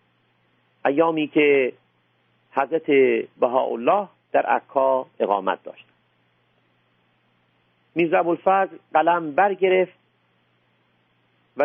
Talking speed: 65 wpm